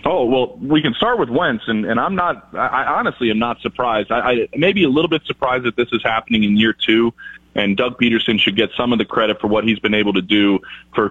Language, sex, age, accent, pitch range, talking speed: English, male, 30-49, American, 100-115 Hz, 260 wpm